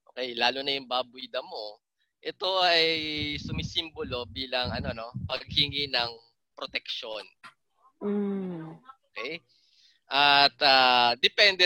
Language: English